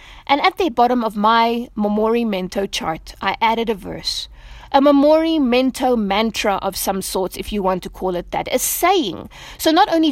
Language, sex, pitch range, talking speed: English, female, 205-270 Hz, 180 wpm